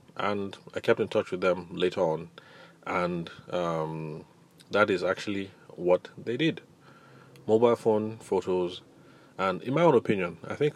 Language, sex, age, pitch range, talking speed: English, male, 30-49, 85-95 Hz, 150 wpm